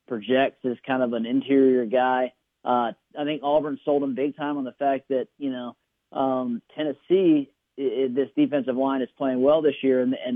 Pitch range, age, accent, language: 125-140 Hz, 40-59, American, English